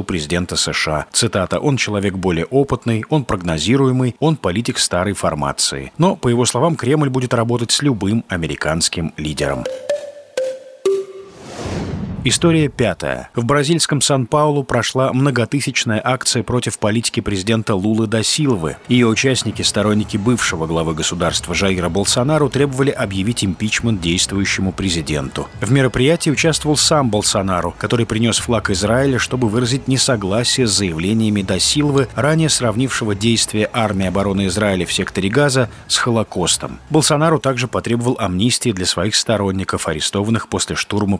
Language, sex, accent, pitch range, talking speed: Russian, male, native, 95-135 Hz, 130 wpm